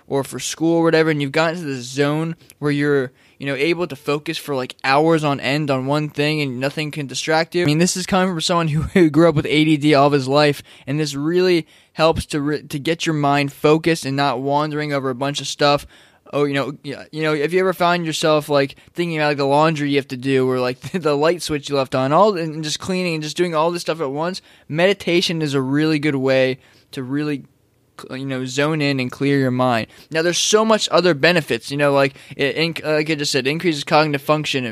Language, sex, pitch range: English, male, 140-170 Hz